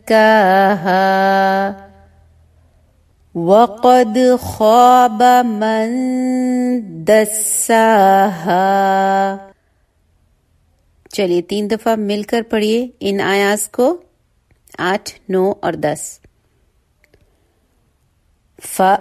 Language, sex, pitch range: English, female, 185-235 Hz